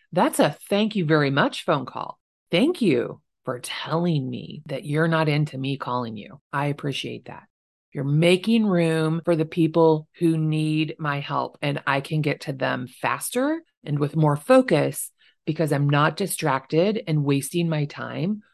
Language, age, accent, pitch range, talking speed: English, 30-49, American, 145-175 Hz, 170 wpm